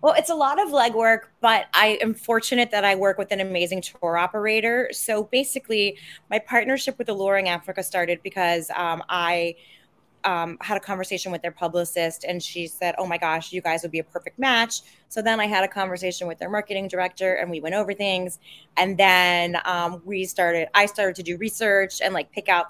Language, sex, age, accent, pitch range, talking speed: English, female, 20-39, American, 165-195 Hz, 205 wpm